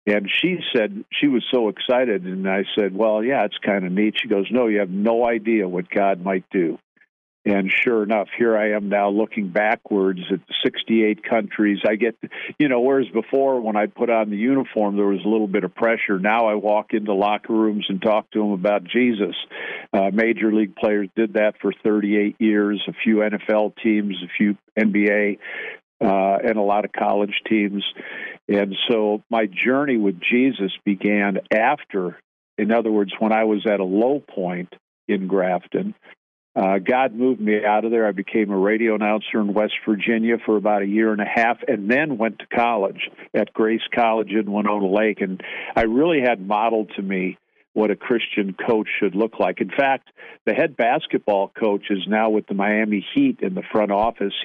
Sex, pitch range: male, 100-110 Hz